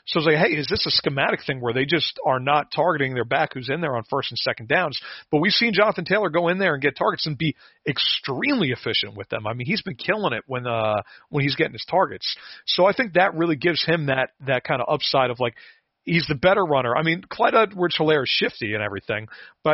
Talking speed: 250 wpm